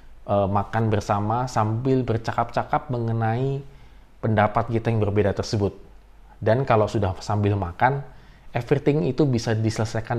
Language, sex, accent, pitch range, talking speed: Indonesian, male, native, 100-125 Hz, 110 wpm